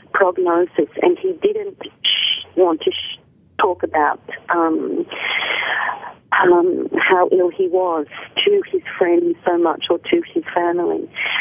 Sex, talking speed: female, 120 wpm